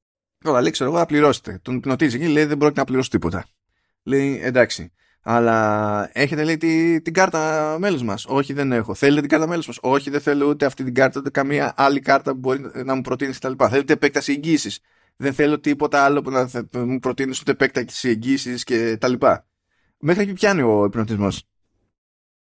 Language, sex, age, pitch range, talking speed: Greek, male, 20-39, 115-155 Hz, 180 wpm